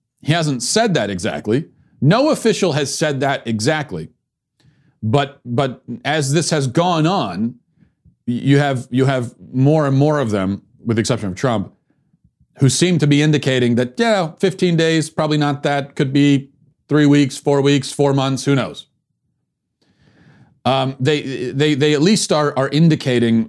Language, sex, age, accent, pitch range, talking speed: English, male, 40-59, American, 115-145 Hz, 160 wpm